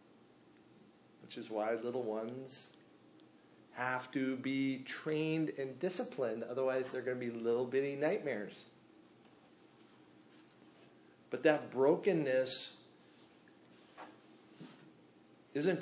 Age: 40-59